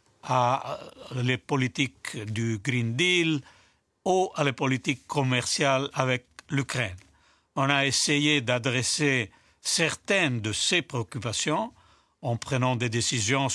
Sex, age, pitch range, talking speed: male, 60-79, 120-150 Hz, 110 wpm